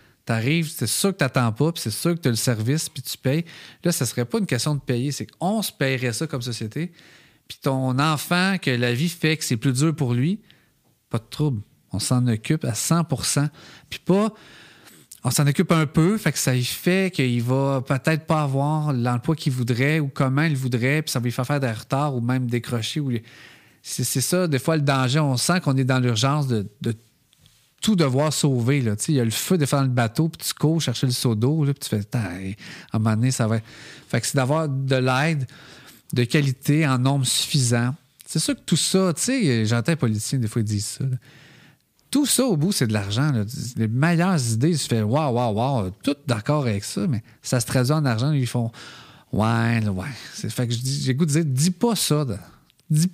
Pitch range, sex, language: 120-155 Hz, male, French